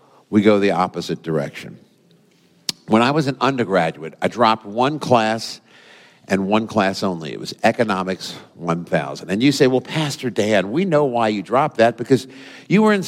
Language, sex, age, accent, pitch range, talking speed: English, male, 50-69, American, 105-140 Hz, 175 wpm